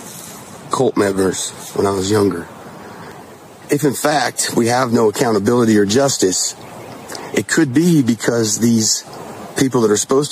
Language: English